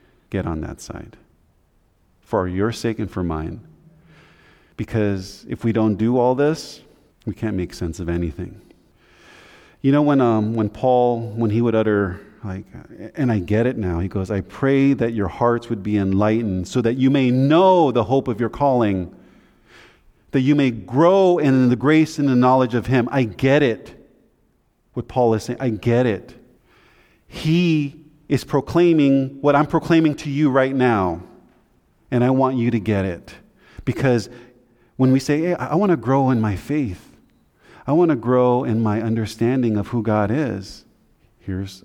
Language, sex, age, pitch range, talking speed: English, male, 40-59, 100-135 Hz, 175 wpm